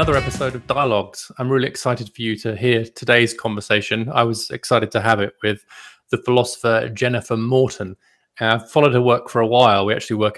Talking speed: 190 wpm